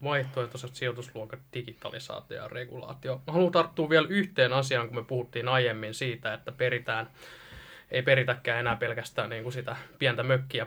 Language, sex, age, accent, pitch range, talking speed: Finnish, male, 20-39, native, 120-140 Hz, 135 wpm